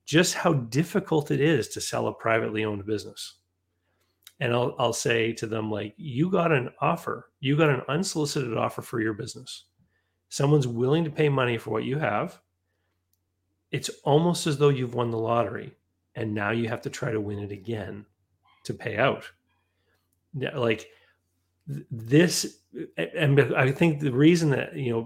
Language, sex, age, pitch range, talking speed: English, male, 40-59, 110-145 Hz, 170 wpm